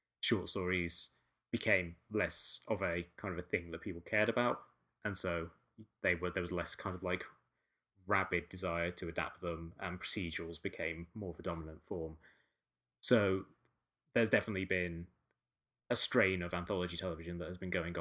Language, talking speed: English, 165 wpm